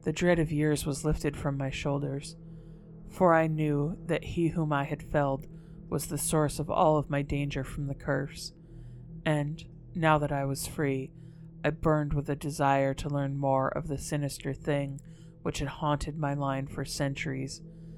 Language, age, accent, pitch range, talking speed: English, 30-49, American, 140-160 Hz, 180 wpm